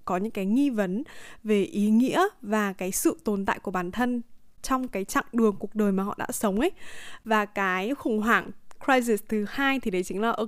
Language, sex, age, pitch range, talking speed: Vietnamese, female, 20-39, 200-260 Hz, 225 wpm